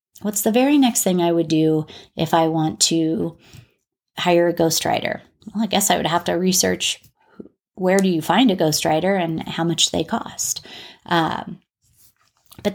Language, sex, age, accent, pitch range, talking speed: English, female, 30-49, American, 165-205 Hz, 170 wpm